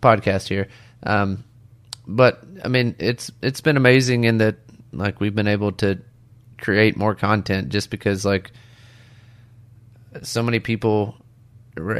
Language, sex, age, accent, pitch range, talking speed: English, male, 30-49, American, 105-120 Hz, 135 wpm